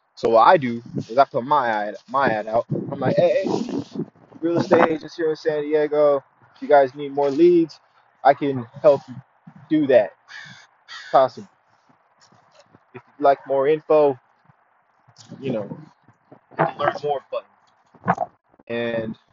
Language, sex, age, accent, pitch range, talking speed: English, male, 20-39, American, 140-195 Hz, 145 wpm